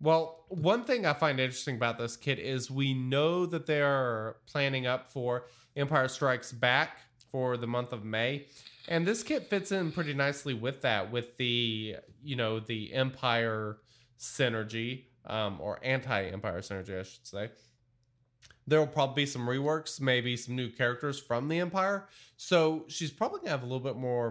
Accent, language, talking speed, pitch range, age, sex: American, English, 180 wpm, 115-145 Hz, 20-39, male